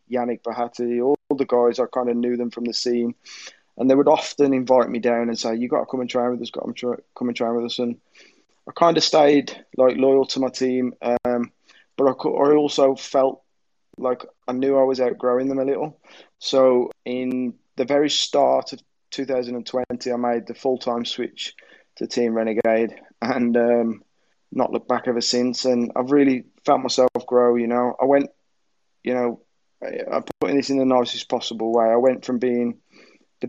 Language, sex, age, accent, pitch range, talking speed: English, male, 20-39, British, 120-130 Hz, 195 wpm